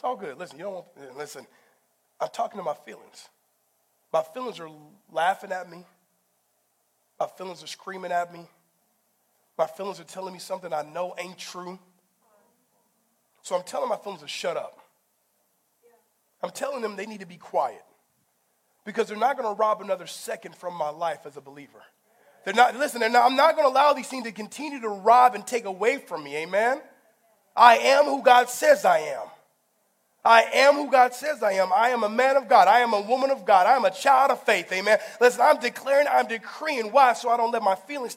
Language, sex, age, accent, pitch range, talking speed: English, male, 30-49, American, 180-250 Hz, 210 wpm